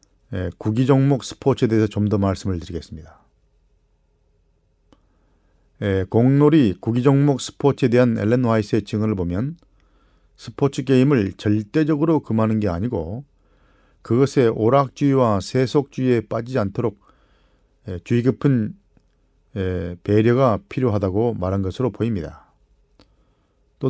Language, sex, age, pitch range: Korean, male, 40-59, 100-130 Hz